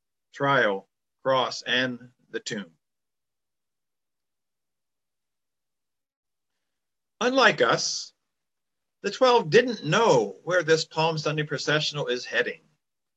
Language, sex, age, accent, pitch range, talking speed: English, male, 50-69, American, 140-175 Hz, 80 wpm